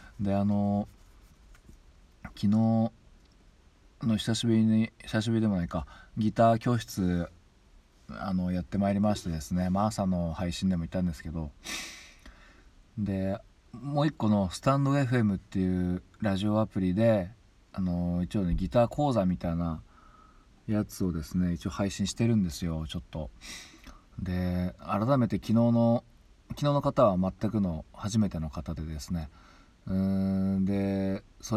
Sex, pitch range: male, 85-105 Hz